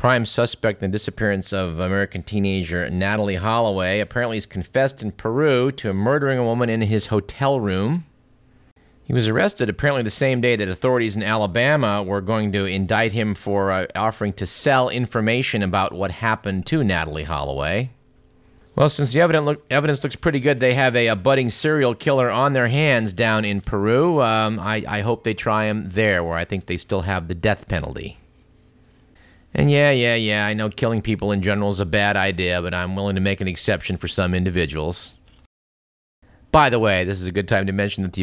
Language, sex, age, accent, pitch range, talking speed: English, male, 40-59, American, 95-120 Hz, 195 wpm